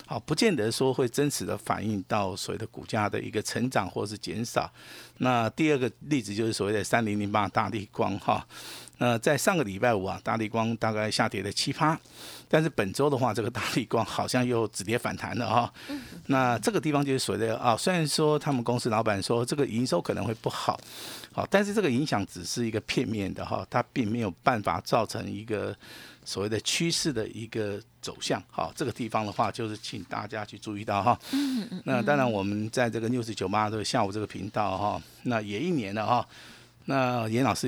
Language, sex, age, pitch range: Chinese, male, 50-69, 105-130 Hz